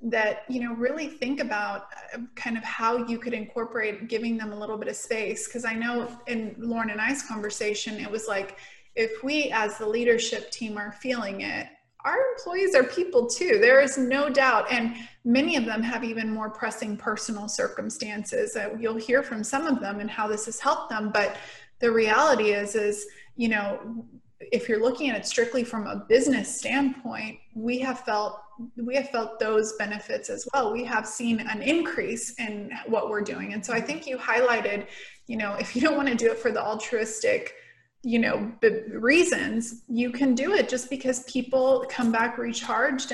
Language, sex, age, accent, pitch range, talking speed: English, female, 20-39, American, 220-255 Hz, 190 wpm